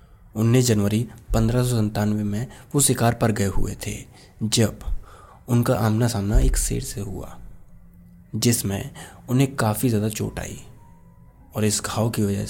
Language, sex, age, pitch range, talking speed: Hindi, male, 20-39, 105-125 Hz, 140 wpm